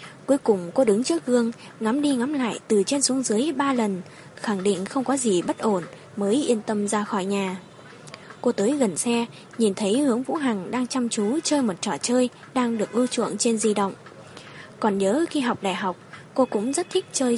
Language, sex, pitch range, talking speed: Vietnamese, female, 200-255 Hz, 220 wpm